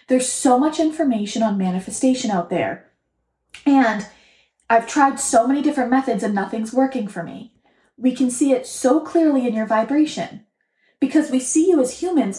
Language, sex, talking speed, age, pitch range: English, female, 170 wpm, 20-39, 215-285 Hz